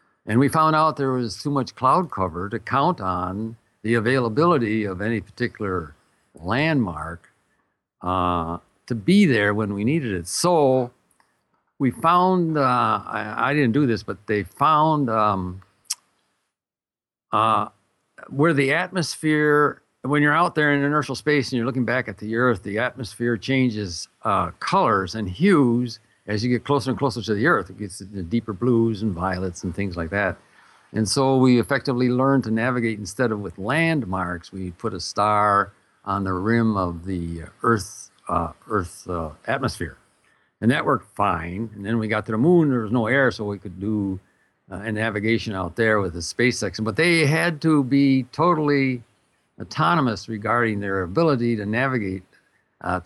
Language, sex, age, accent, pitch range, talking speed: English, male, 60-79, American, 100-135 Hz, 170 wpm